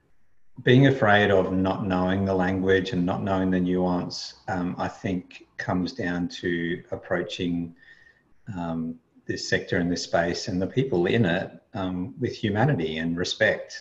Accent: Australian